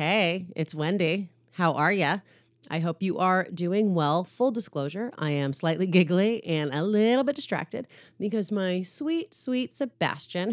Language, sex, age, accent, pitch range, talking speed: English, female, 30-49, American, 170-230 Hz, 160 wpm